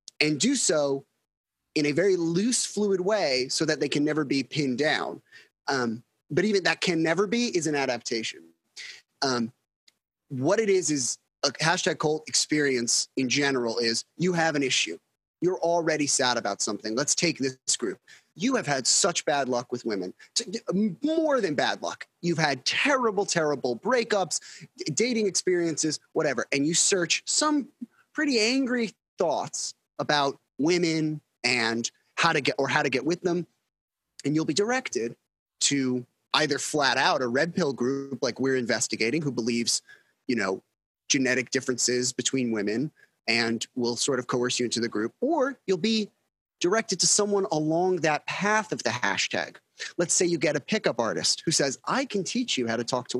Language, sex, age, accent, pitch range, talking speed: English, male, 30-49, American, 125-190 Hz, 170 wpm